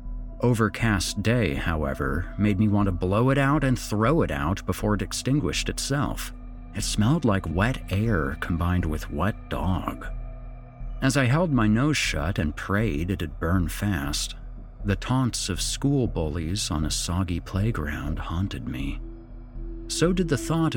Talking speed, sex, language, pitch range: 155 wpm, male, English, 90-125 Hz